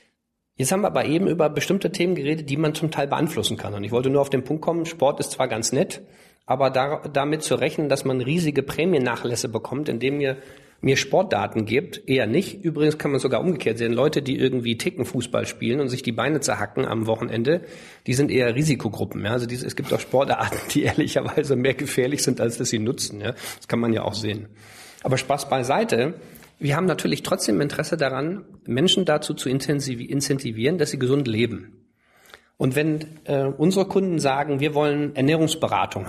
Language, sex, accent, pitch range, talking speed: German, male, German, 125-150 Hz, 195 wpm